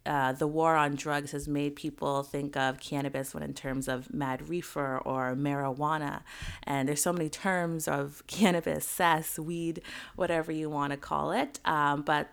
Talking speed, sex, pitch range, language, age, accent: 175 wpm, female, 140-170 Hz, English, 30-49, American